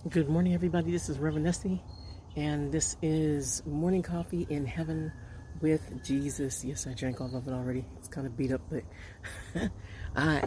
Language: English